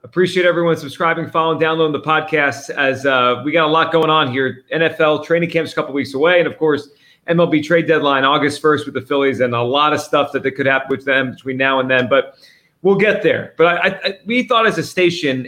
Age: 30-49